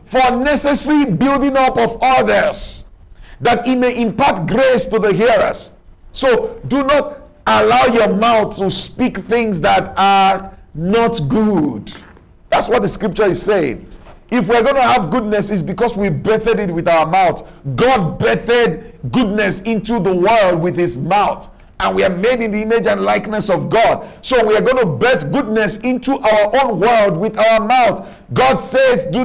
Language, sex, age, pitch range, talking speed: English, male, 50-69, 195-250 Hz, 170 wpm